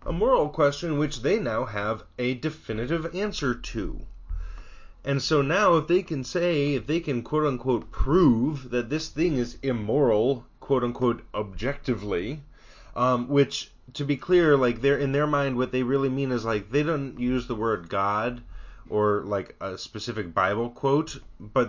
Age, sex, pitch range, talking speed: 30-49, male, 100-140 Hz, 170 wpm